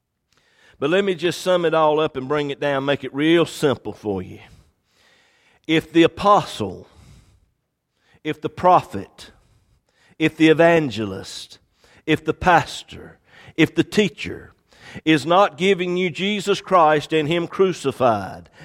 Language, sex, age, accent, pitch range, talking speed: English, male, 50-69, American, 140-185 Hz, 135 wpm